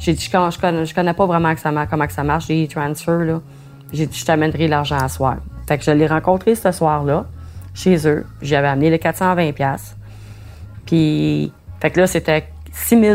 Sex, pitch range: female, 145-185 Hz